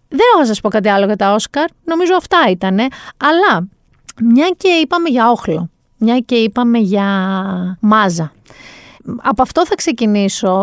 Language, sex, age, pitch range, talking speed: Greek, female, 30-49, 200-265 Hz, 150 wpm